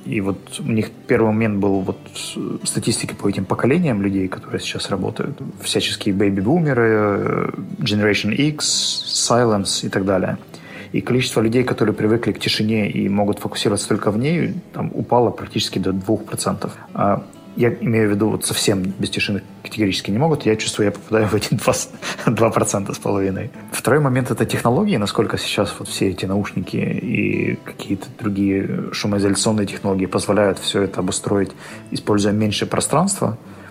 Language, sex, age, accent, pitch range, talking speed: Russian, male, 20-39, native, 100-115 Hz, 150 wpm